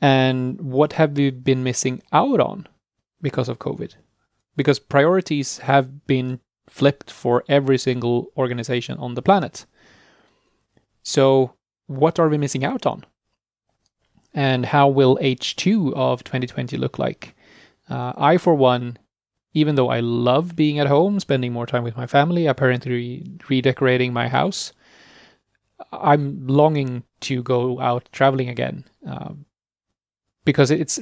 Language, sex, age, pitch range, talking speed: English, male, 30-49, 125-140 Hz, 130 wpm